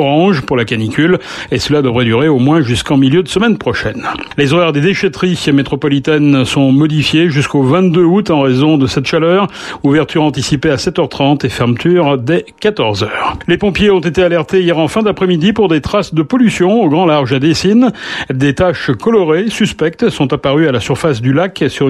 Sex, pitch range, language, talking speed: male, 135-180 Hz, French, 190 wpm